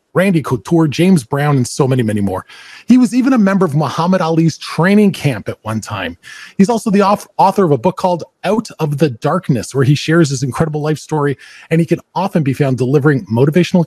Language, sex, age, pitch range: English, male, 30-49, 140-185 Hz